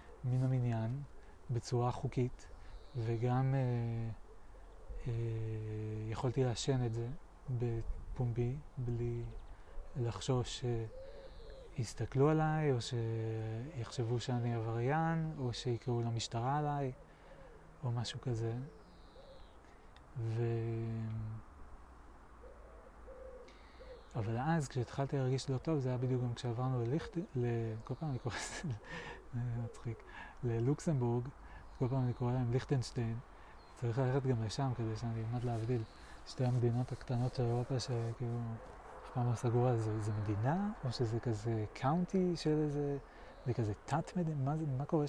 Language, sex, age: Hebrew, male, 30-49